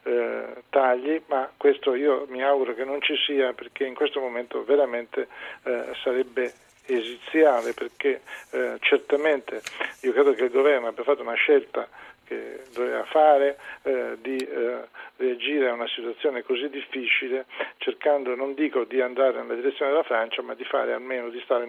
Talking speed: 160 wpm